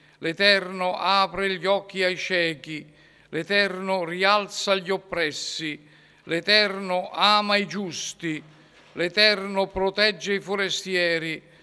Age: 50-69